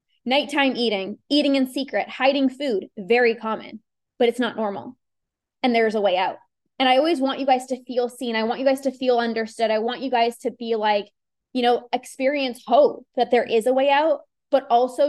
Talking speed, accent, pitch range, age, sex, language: 210 wpm, American, 230-275 Hz, 20-39, female, English